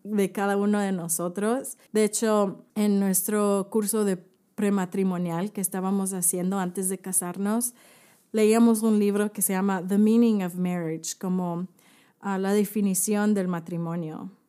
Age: 30-49